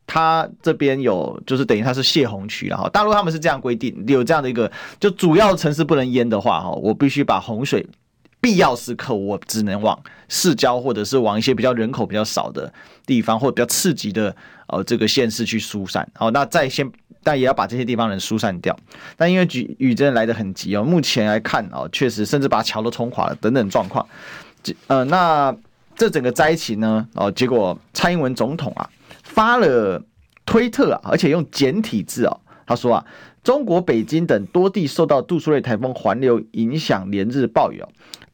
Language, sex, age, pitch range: Chinese, male, 30-49, 110-155 Hz